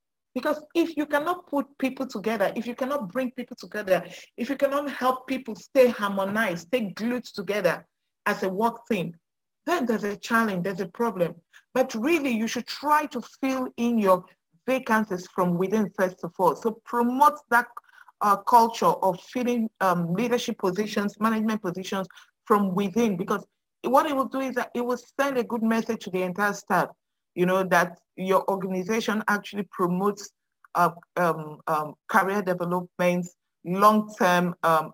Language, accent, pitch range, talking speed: English, Nigerian, 185-250 Hz, 160 wpm